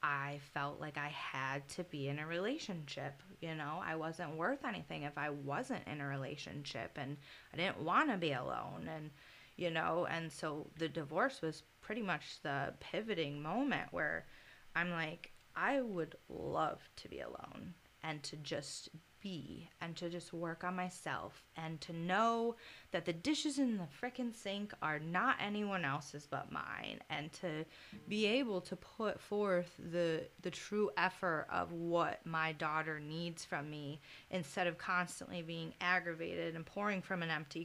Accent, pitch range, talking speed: American, 150-180 Hz, 165 wpm